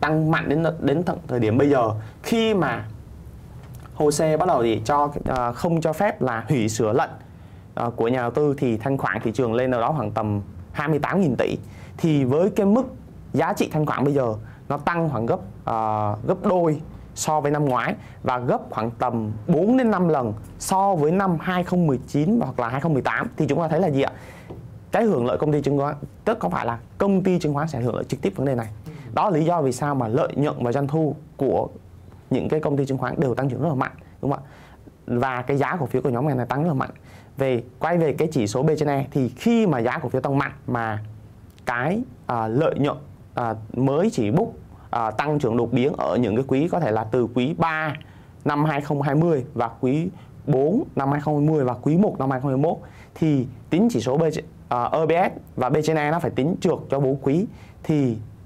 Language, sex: Vietnamese, male